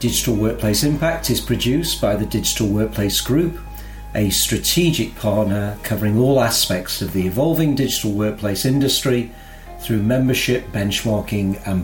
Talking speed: 130 wpm